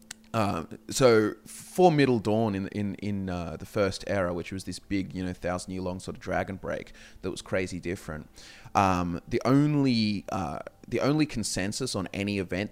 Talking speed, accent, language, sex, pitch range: 185 wpm, Australian, English, male, 90-105 Hz